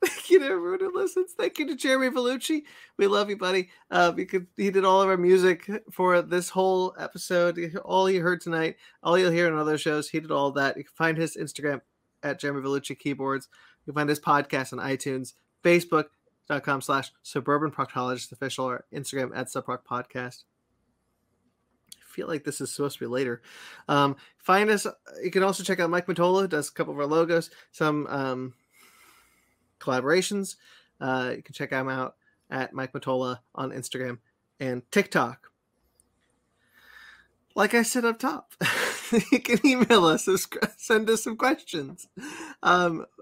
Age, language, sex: 30-49, English, male